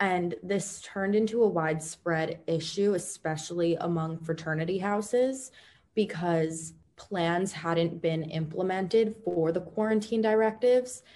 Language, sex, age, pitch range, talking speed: English, female, 20-39, 160-185 Hz, 110 wpm